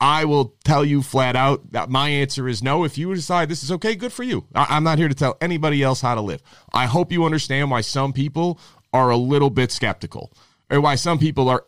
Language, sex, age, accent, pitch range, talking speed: English, male, 30-49, American, 125-150 Hz, 240 wpm